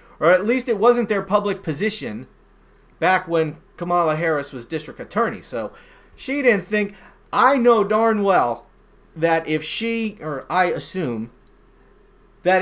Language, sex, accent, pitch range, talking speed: English, male, American, 140-200 Hz, 145 wpm